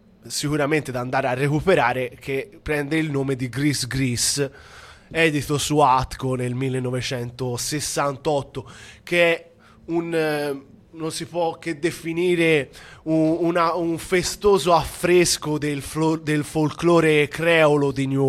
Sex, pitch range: male, 130-160 Hz